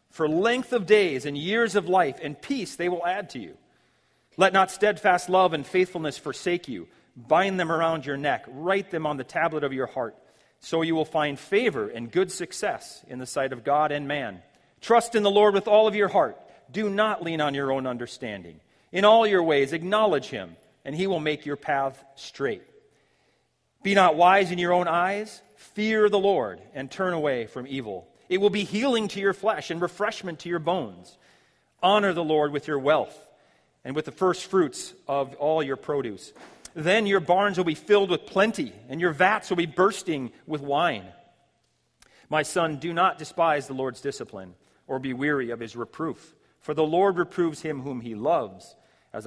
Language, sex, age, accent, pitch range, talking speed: English, male, 40-59, American, 140-195 Hz, 195 wpm